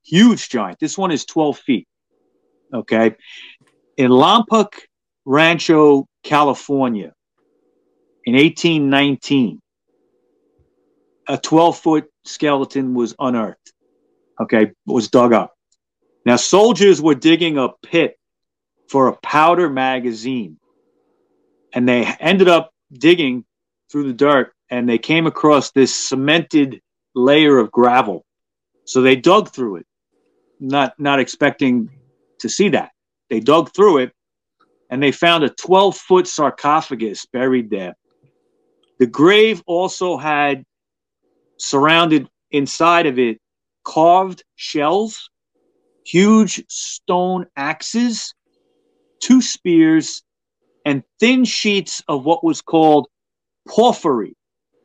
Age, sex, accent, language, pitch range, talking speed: 40-59, male, American, English, 135-190 Hz, 105 wpm